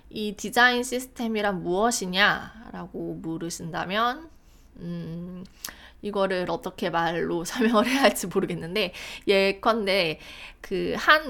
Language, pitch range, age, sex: Korean, 185-255 Hz, 20-39, female